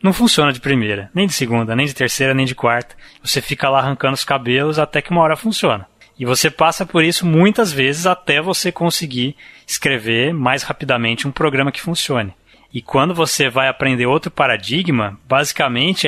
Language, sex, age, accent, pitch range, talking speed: Portuguese, male, 20-39, Brazilian, 130-175 Hz, 185 wpm